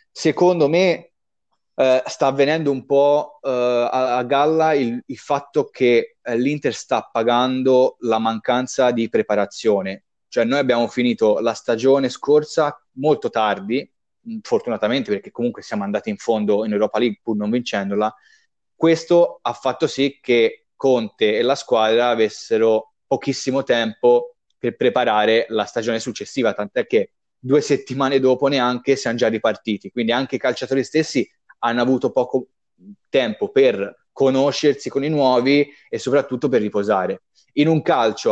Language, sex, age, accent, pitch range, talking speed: Italian, male, 20-39, native, 120-155 Hz, 140 wpm